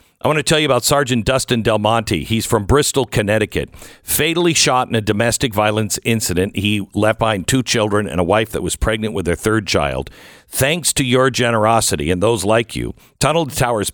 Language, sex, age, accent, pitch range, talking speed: English, male, 50-69, American, 95-125 Hz, 200 wpm